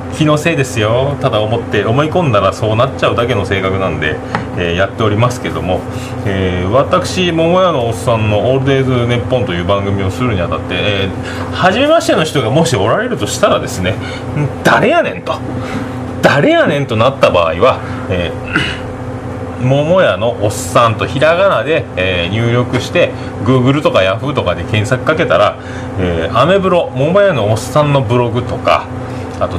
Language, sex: Japanese, male